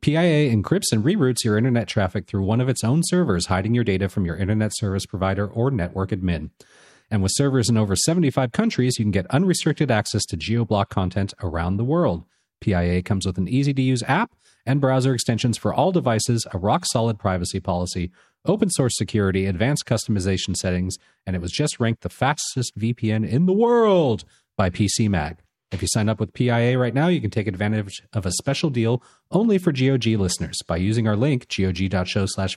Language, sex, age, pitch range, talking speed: English, male, 40-59, 95-135 Hz, 185 wpm